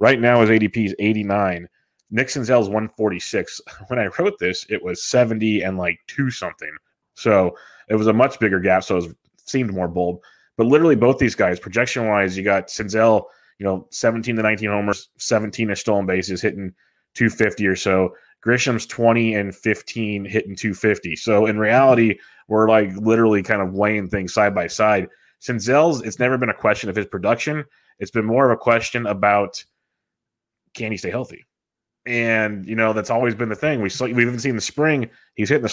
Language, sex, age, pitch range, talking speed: English, male, 20-39, 100-120 Hz, 190 wpm